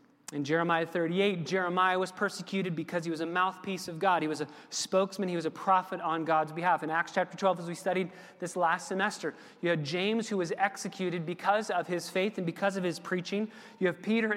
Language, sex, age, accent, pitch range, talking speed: English, male, 30-49, American, 170-215 Hz, 215 wpm